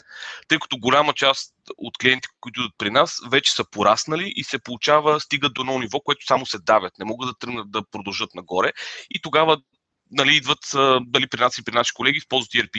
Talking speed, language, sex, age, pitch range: 205 wpm, Bulgarian, male, 30-49, 120-150 Hz